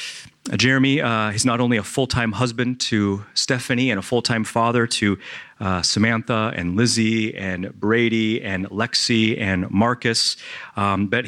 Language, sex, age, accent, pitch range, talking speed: English, male, 30-49, American, 100-120 Hz, 150 wpm